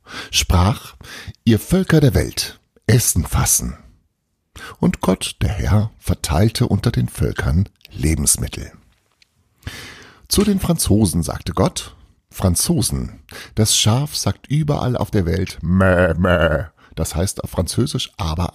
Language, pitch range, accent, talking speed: German, 85-115 Hz, German, 115 wpm